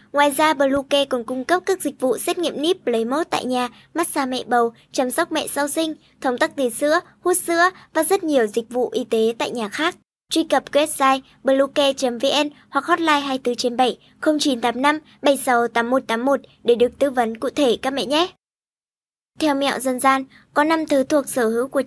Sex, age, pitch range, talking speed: male, 20-39, 245-295 Hz, 185 wpm